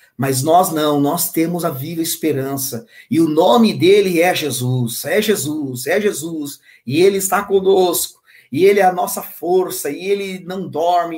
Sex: male